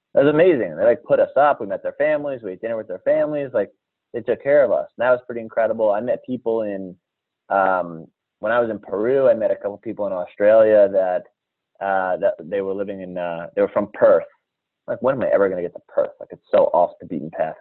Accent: American